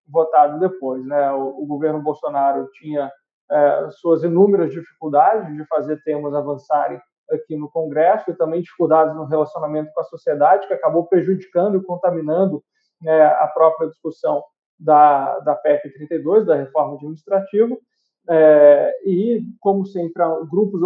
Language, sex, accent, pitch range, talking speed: Portuguese, male, Brazilian, 155-200 Hz, 140 wpm